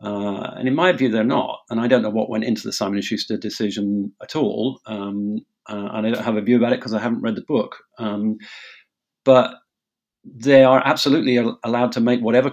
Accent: British